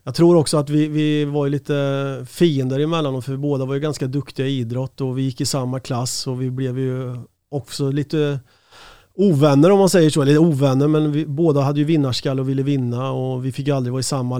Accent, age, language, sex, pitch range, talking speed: native, 30-49, Swedish, male, 130-145 Hz, 240 wpm